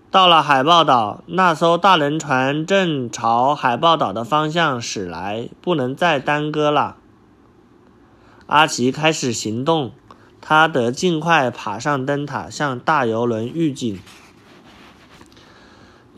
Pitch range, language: 125-170 Hz, Chinese